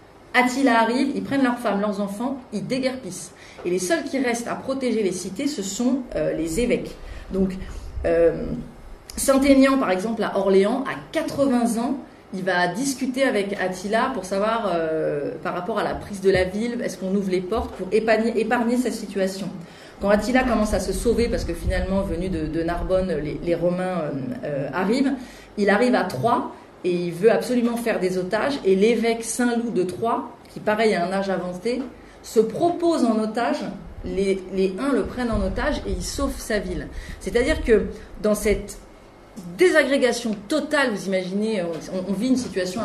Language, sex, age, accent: French, female, 30-49, French